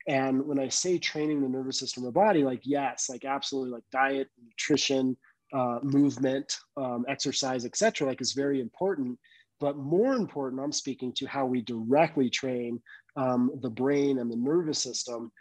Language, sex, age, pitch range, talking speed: English, male, 30-49, 125-145 Hz, 175 wpm